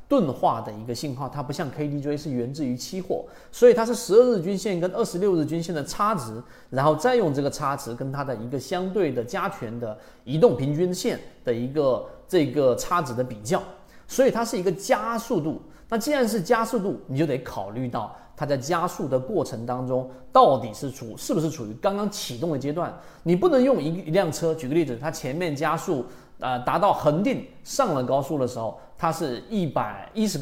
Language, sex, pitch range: Chinese, male, 130-195 Hz